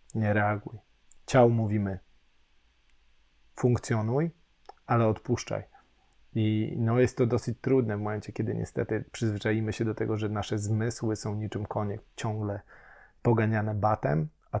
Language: Polish